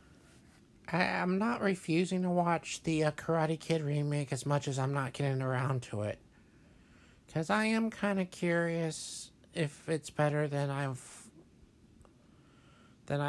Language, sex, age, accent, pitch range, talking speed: English, male, 60-79, American, 130-180 Hz, 140 wpm